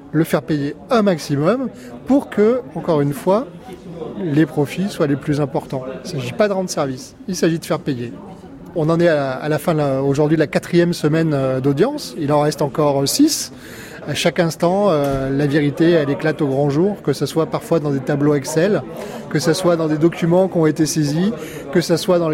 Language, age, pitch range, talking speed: French, 30-49, 145-170 Hz, 220 wpm